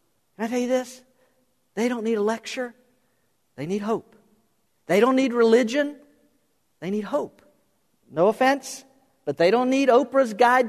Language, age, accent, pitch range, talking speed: English, 50-69, American, 150-225 Hz, 155 wpm